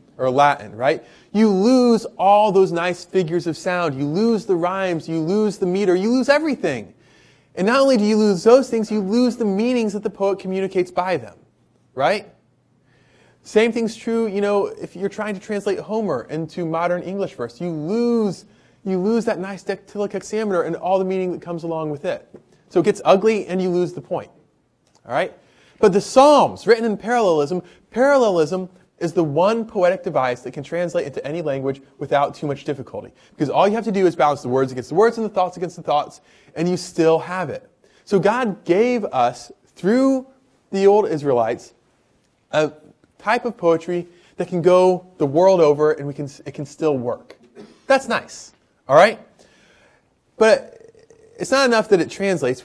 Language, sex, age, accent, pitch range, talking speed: English, male, 20-39, American, 165-215 Hz, 190 wpm